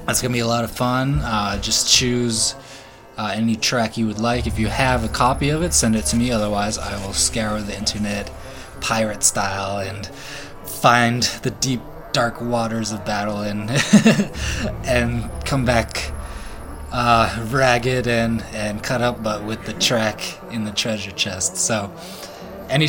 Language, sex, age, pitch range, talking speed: English, male, 20-39, 100-120 Hz, 165 wpm